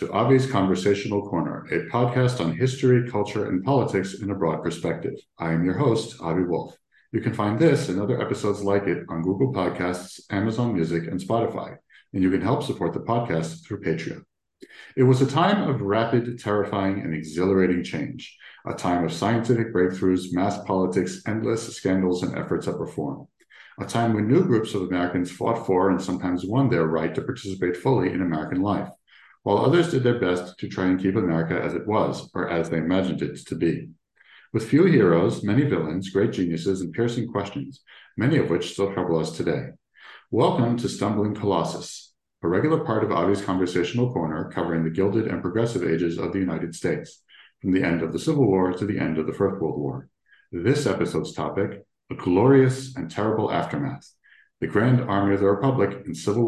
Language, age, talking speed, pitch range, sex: English, 50-69, 190 wpm, 90-120 Hz, male